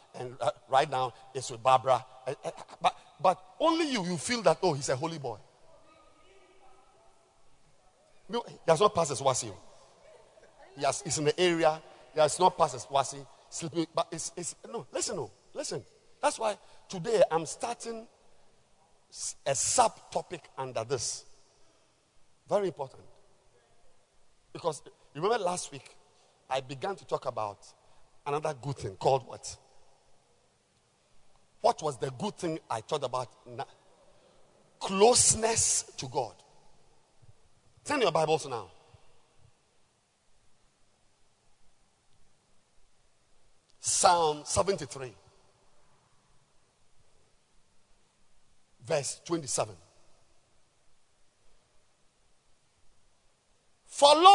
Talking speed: 95 wpm